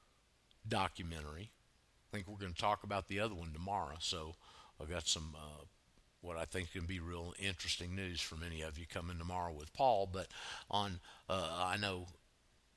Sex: male